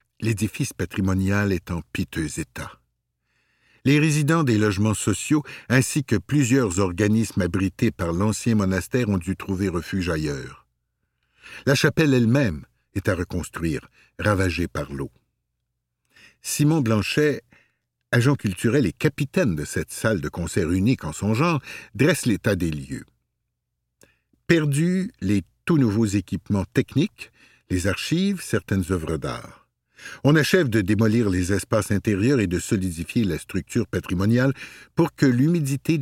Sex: male